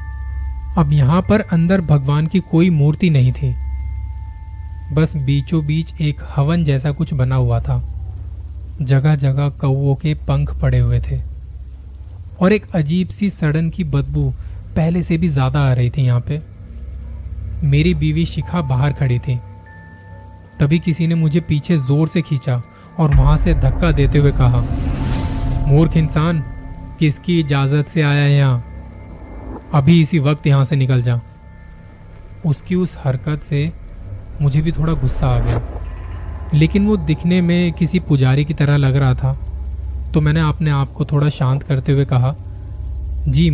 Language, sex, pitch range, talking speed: Hindi, male, 95-155 Hz, 155 wpm